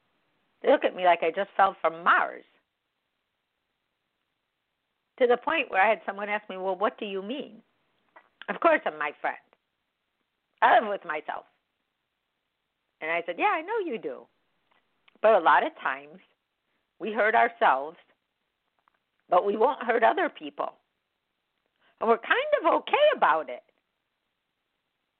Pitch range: 160-235 Hz